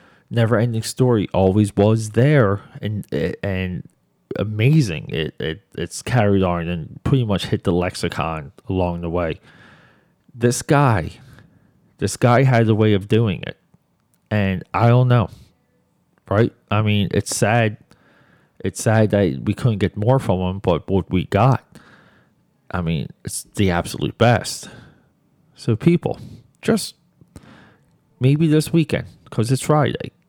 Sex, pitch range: male, 100-130 Hz